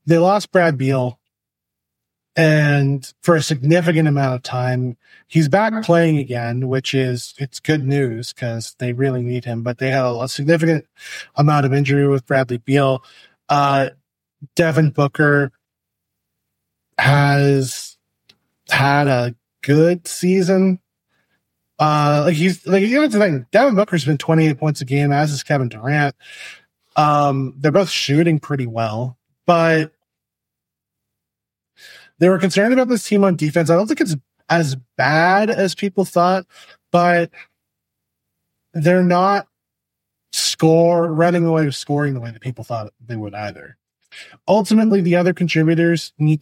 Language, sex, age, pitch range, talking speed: English, male, 20-39, 130-170 Hz, 140 wpm